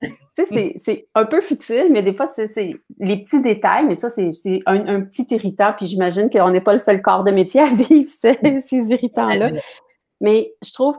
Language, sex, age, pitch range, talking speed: French, female, 30-49, 190-225 Hz, 225 wpm